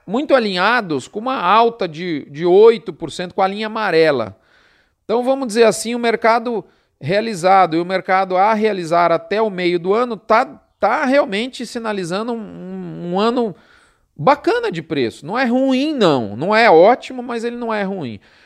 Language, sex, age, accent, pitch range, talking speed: Portuguese, male, 40-59, Brazilian, 185-240 Hz, 165 wpm